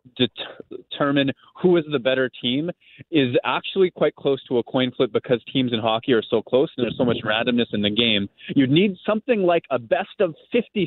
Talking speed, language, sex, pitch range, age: 205 wpm, English, male, 120-150 Hz, 20-39